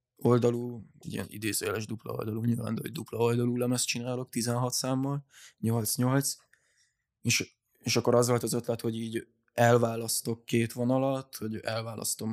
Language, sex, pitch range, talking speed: Hungarian, male, 115-120 Hz, 135 wpm